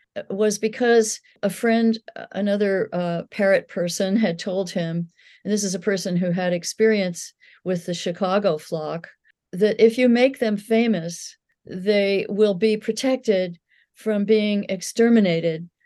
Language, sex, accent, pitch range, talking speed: English, female, American, 175-220 Hz, 135 wpm